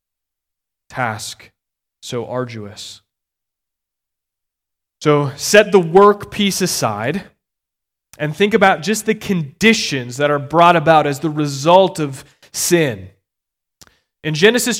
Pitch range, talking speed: 130-185 Hz, 105 wpm